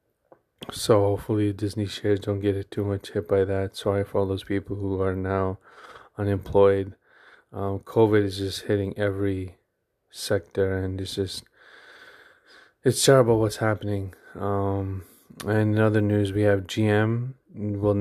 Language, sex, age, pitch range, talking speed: English, male, 20-39, 95-105 Hz, 145 wpm